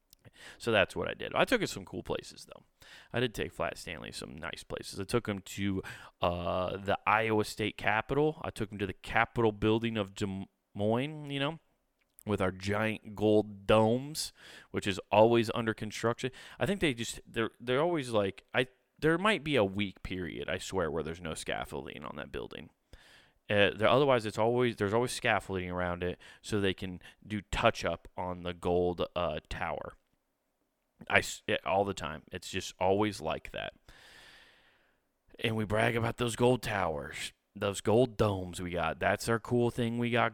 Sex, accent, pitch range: male, American, 95-120 Hz